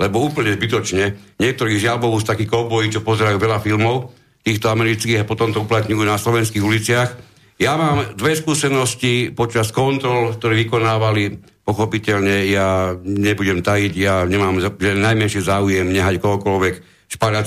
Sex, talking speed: male, 135 wpm